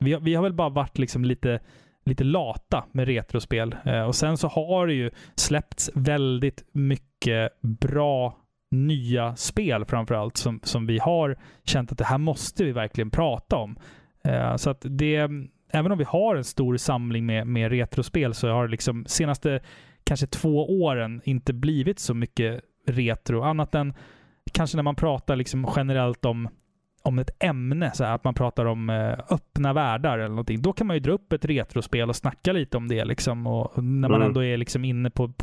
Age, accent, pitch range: 20-39, native, 120-150 Hz